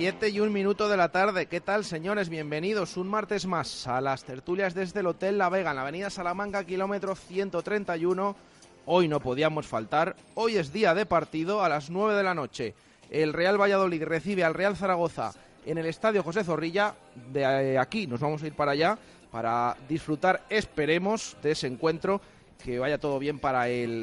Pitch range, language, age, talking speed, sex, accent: 140-195 Hz, Spanish, 30-49, 185 wpm, male, Spanish